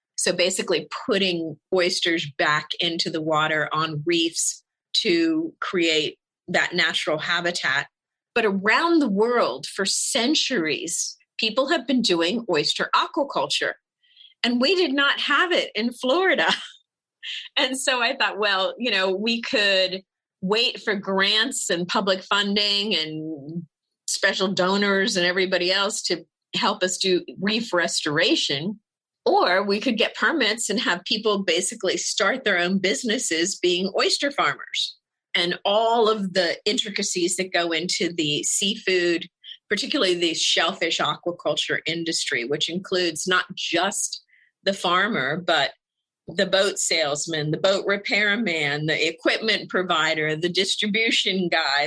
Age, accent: 40-59, American